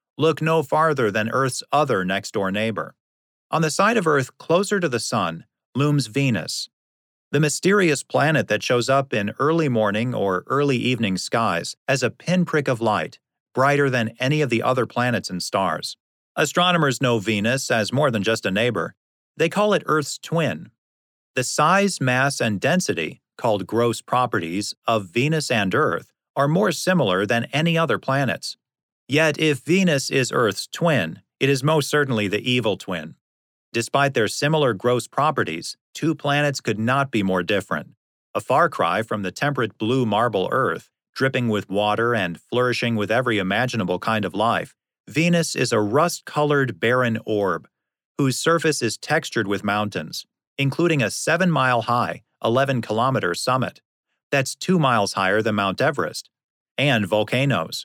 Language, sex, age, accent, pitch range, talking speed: English, male, 40-59, American, 110-150 Hz, 155 wpm